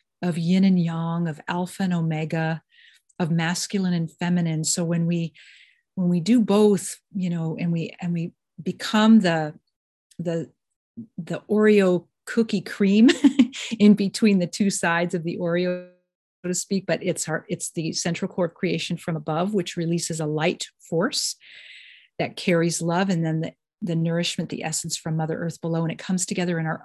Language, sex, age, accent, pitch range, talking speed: English, female, 40-59, American, 165-205 Hz, 175 wpm